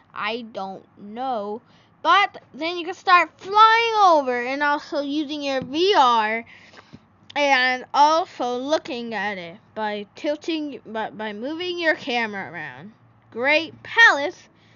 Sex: female